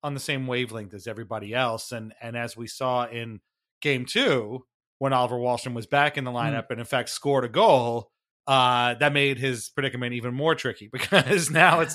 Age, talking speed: 30-49, 200 wpm